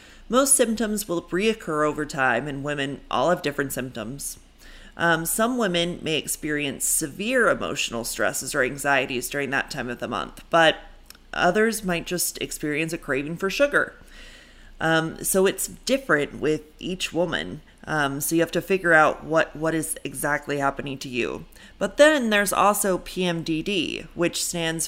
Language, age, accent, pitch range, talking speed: English, 30-49, American, 150-185 Hz, 155 wpm